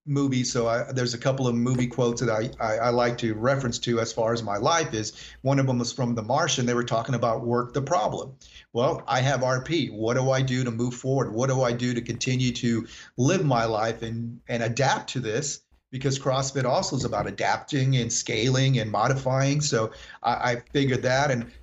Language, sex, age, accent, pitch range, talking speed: English, male, 40-59, American, 120-135 Hz, 220 wpm